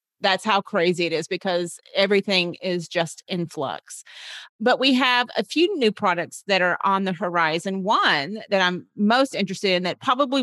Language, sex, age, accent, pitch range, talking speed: English, female, 40-59, American, 180-220 Hz, 180 wpm